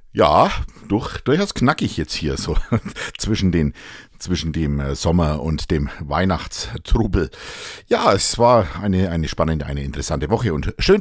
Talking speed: 140 wpm